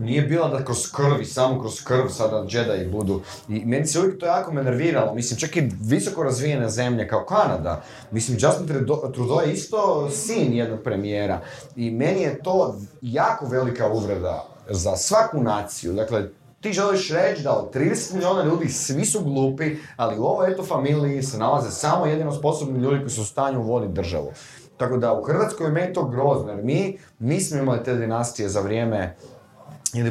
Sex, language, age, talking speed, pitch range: male, Croatian, 30-49, 175 wpm, 110-155 Hz